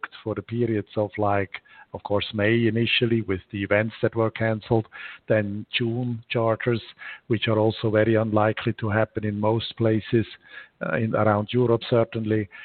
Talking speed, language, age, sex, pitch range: 155 wpm, English, 50-69, male, 105-125 Hz